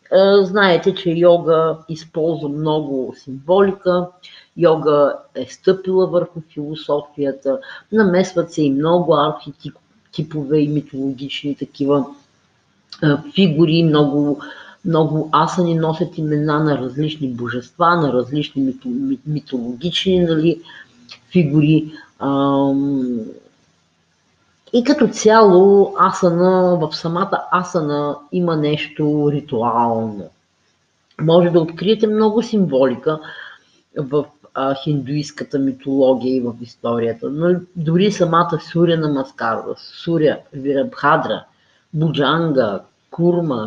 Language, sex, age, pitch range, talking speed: Bulgarian, female, 40-59, 140-175 Hz, 90 wpm